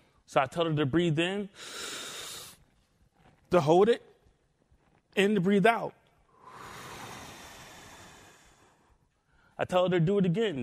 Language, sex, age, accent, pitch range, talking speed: English, male, 30-49, American, 150-205 Hz, 120 wpm